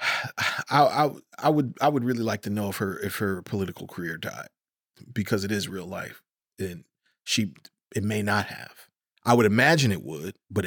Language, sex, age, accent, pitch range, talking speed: English, male, 30-49, American, 105-125 Hz, 190 wpm